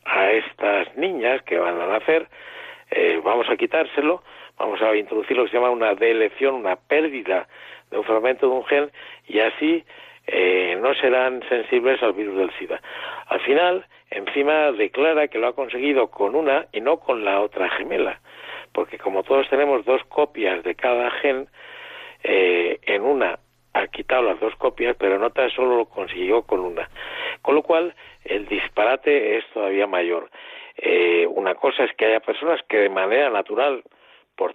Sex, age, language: male, 60-79, Spanish